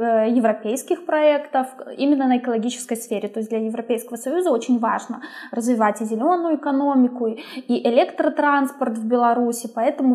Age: 20-39